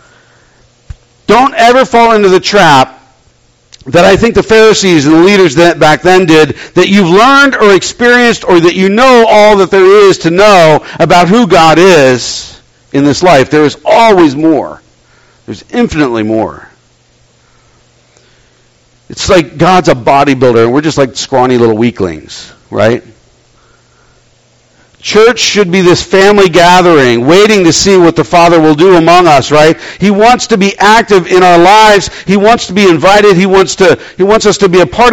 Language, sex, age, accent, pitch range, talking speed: English, male, 50-69, American, 155-210 Hz, 170 wpm